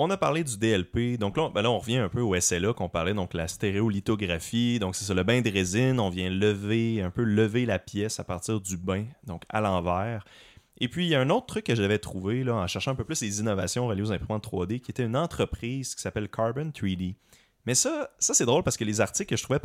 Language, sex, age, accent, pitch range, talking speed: French, male, 30-49, Canadian, 95-125 Hz, 260 wpm